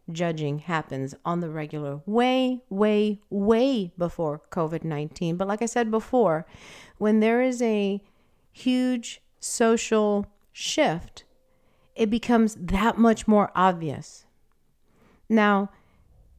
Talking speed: 105 wpm